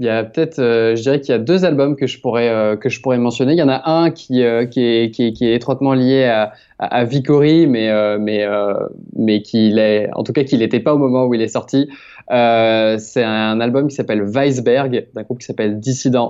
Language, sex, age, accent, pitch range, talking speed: French, male, 20-39, French, 110-135 Hz, 260 wpm